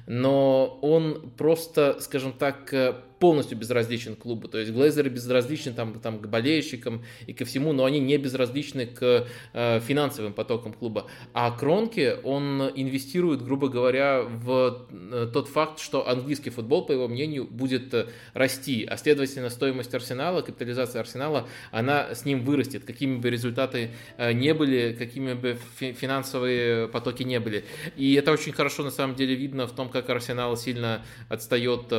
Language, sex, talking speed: Russian, male, 150 wpm